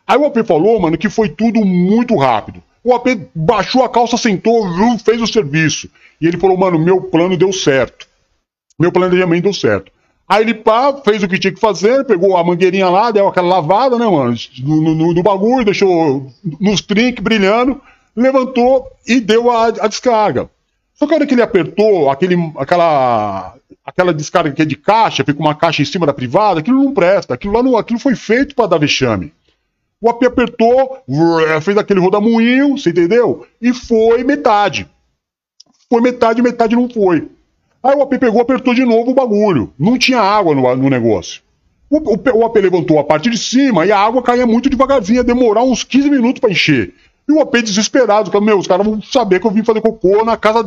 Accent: Brazilian